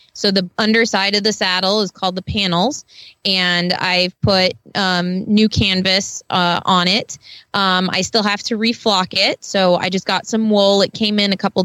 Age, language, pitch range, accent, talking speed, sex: 20-39, English, 180-215 Hz, American, 190 wpm, female